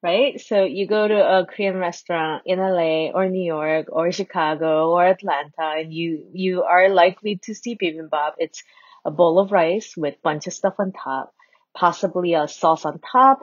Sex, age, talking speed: female, 30-49, 190 wpm